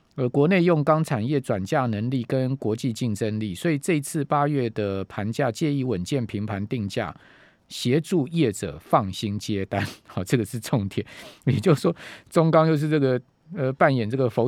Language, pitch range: Chinese, 105-150 Hz